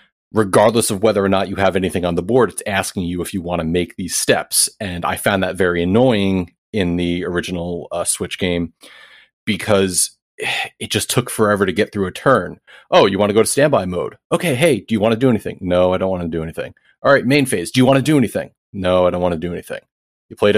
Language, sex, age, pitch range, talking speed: English, male, 30-49, 90-110 Hz, 250 wpm